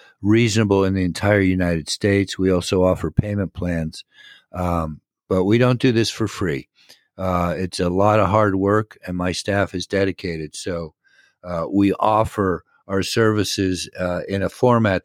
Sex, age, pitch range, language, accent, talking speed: male, 50-69, 95-115 Hz, English, American, 165 wpm